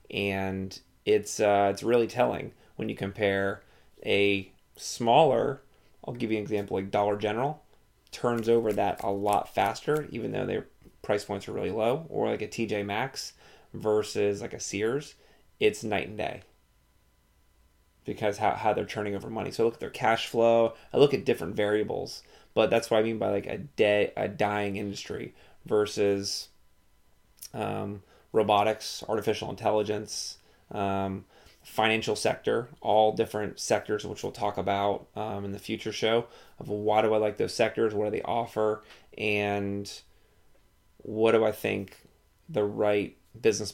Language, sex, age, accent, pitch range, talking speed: English, male, 20-39, American, 100-110 Hz, 160 wpm